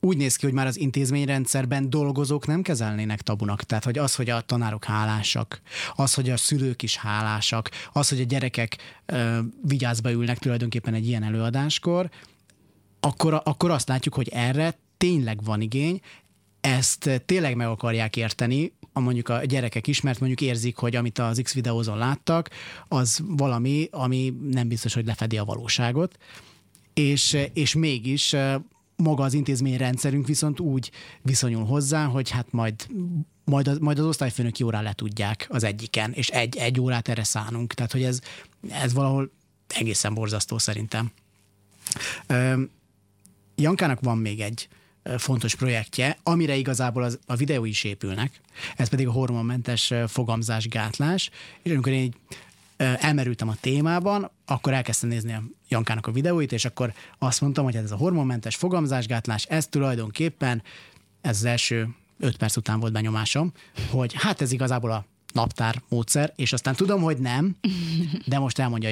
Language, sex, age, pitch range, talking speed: Hungarian, male, 30-49, 115-140 Hz, 155 wpm